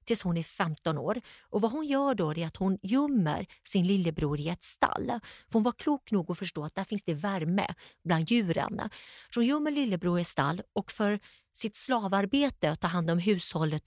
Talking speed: 210 wpm